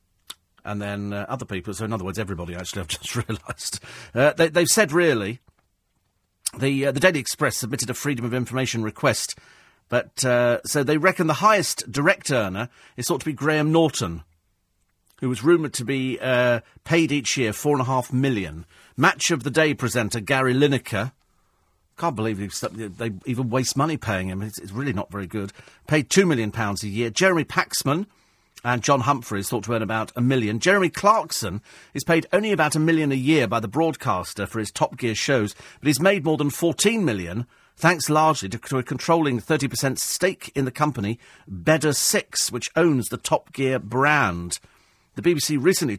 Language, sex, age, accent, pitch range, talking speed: English, male, 40-59, British, 105-150 Hz, 185 wpm